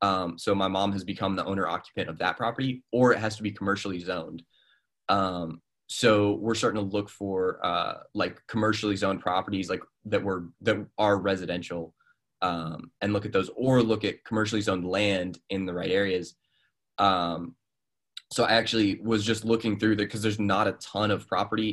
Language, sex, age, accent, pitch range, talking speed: English, male, 20-39, American, 90-105 Hz, 190 wpm